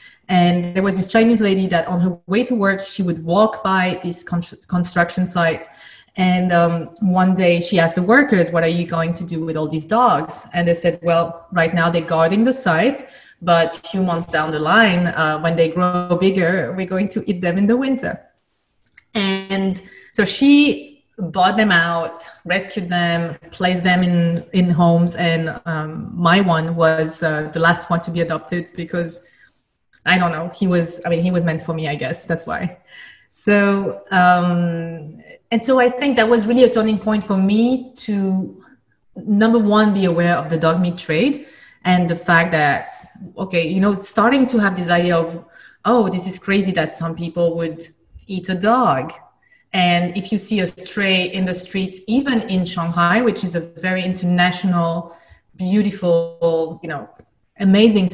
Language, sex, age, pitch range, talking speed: English, female, 30-49, 170-200 Hz, 185 wpm